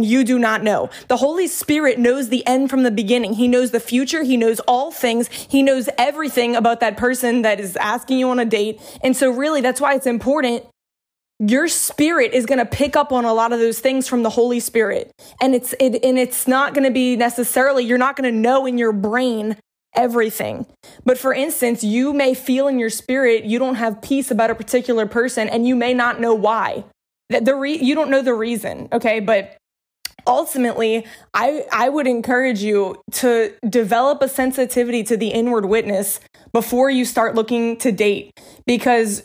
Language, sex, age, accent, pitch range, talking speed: English, female, 20-39, American, 230-265 Hz, 200 wpm